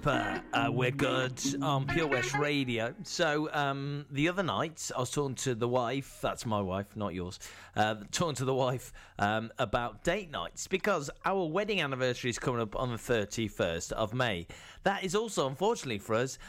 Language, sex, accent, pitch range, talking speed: English, male, British, 115-150 Hz, 185 wpm